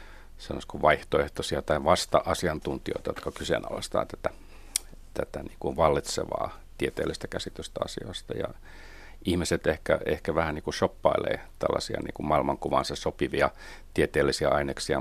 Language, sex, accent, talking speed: Finnish, male, native, 100 wpm